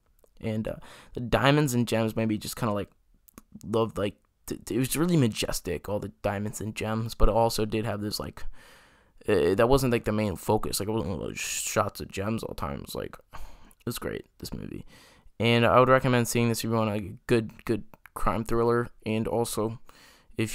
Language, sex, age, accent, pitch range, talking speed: English, male, 10-29, American, 105-115 Hz, 215 wpm